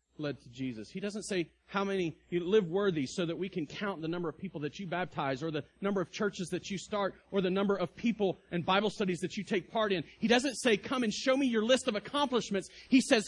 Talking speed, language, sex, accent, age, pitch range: 260 wpm, English, male, American, 30-49, 110-185 Hz